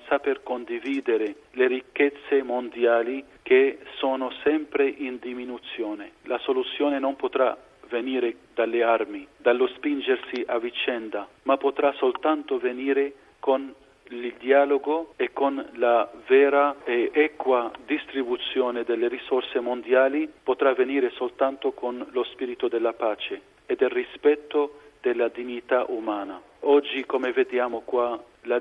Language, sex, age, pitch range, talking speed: Italian, male, 40-59, 120-145 Hz, 120 wpm